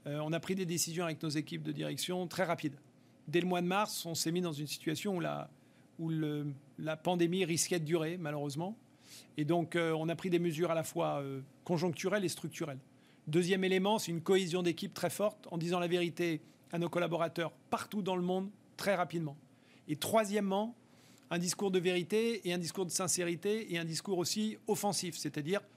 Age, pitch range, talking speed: 40-59, 160-190 Hz, 205 wpm